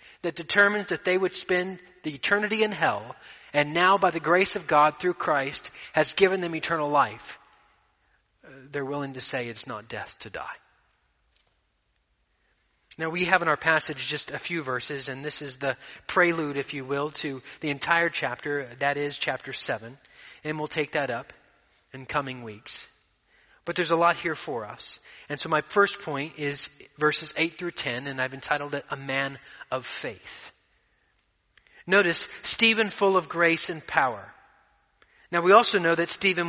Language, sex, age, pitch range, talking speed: English, male, 30-49, 140-170 Hz, 175 wpm